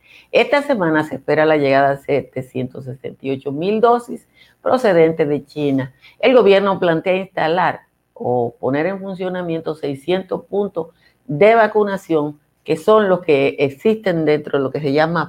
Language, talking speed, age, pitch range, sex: Spanish, 140 wpm, 50-69, 145-195 Hz, female